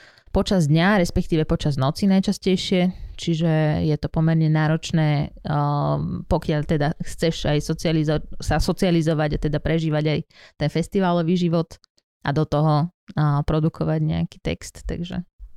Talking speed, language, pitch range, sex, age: 125 wpm, Slovak, 150-175 Hz, female, 20-39